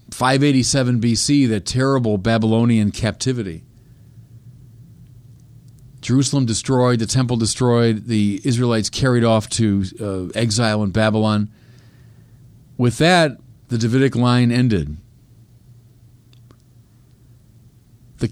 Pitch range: 110-130 Hz